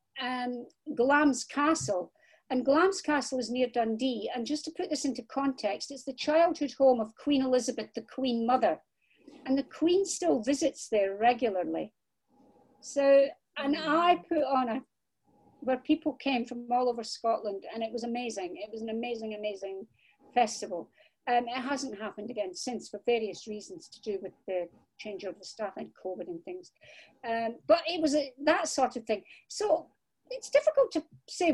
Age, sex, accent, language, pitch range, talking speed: 60-79, female, British, English, 225-295 Hz, 170 wpm